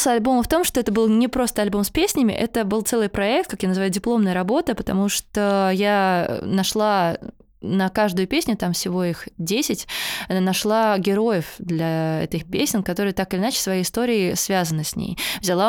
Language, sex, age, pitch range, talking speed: Russian, female, 20-39, 175-220 Hz, 180 wpm